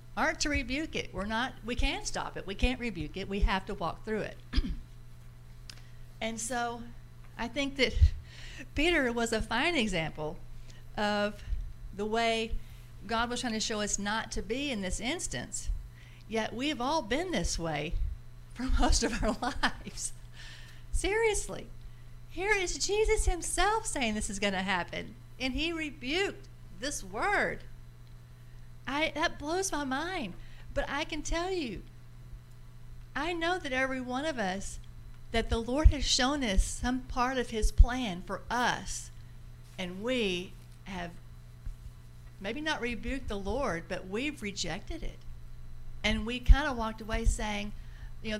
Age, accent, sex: 50-69, American, female